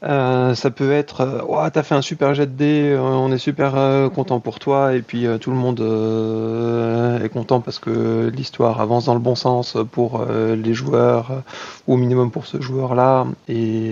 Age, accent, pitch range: 30-49, French, 120-145 Hz